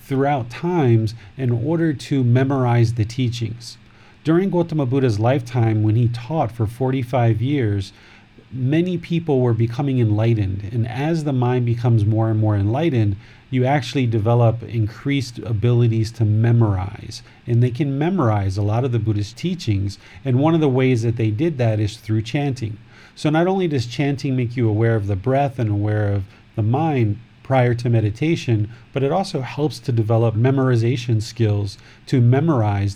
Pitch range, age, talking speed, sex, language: 110-135 Hz, 40-59, 165 wpm, male, English